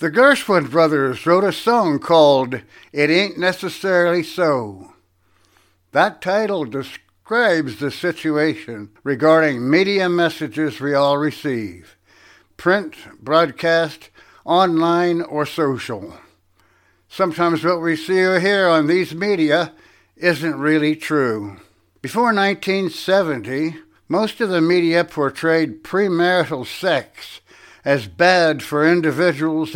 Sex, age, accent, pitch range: male, 60-79, American, 140-180 Hz